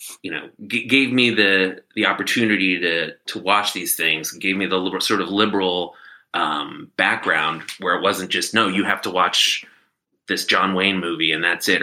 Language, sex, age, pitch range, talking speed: English, male, 30-49, 90-125 Hz, 185 wpm